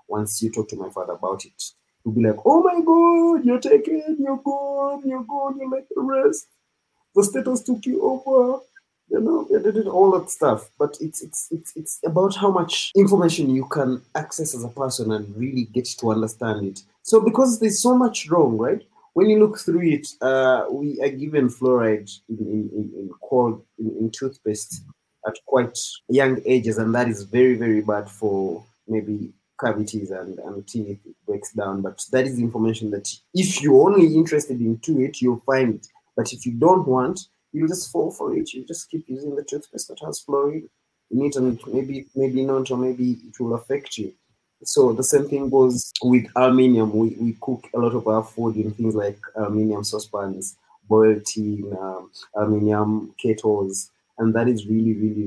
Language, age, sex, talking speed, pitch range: English, 30-49, male, 190 wpm, 110-175 Hz